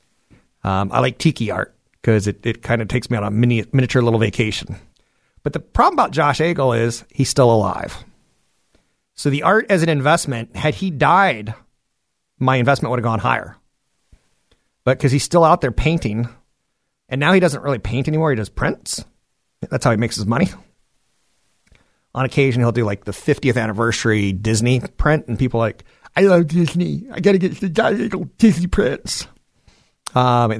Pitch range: 115-160 Hz